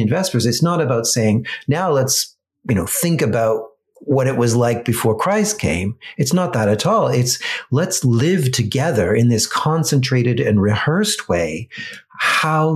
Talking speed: 160 wpm